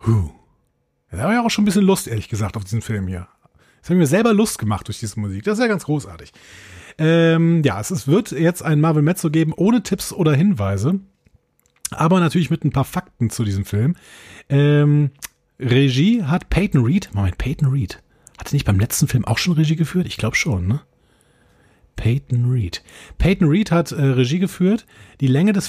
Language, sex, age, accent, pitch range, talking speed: German, male, 40-59, German, 110-165 Hz, 195 wpm